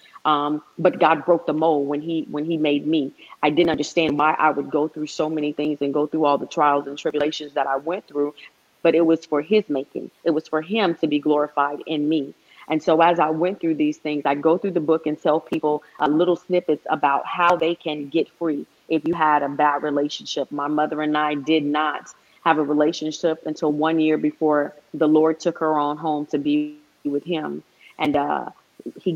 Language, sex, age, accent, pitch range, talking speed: English, female, 30-49, American, 150-165 Hz, 220 wpm